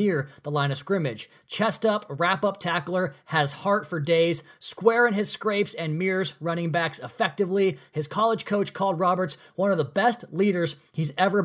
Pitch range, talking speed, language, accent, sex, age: 155-195 Hz, 185 wpm, English, American, male, 20-39